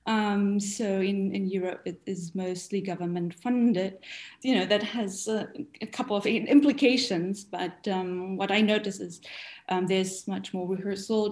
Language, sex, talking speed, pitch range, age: English, female, 160 wpm, 190-240 Hz, 20-39